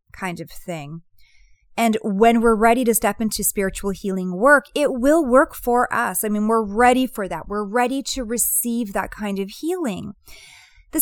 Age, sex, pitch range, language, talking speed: 30-49, female, 195-250 Hz, English, 180 wpm